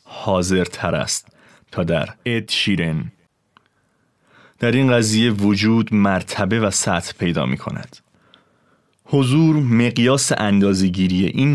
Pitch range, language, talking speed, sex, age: 95-125 Hz, Persian, 110 wpm, male, 30-49